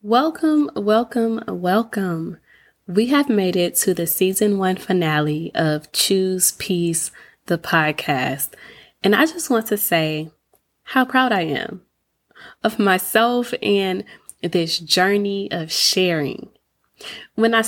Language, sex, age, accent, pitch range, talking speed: English, female, 20-39, American, 170-210 Hz, 120 wpm